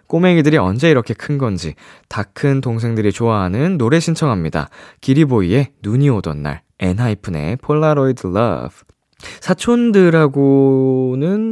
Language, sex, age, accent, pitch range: Korean, male, 20-39, native, 100-155 Hz